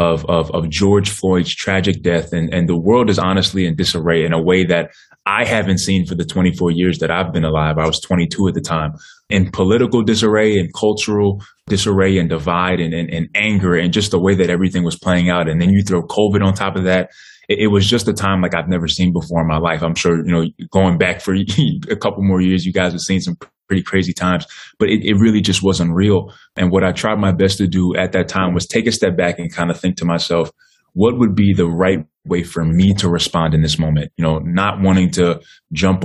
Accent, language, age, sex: American, English, 20-39, male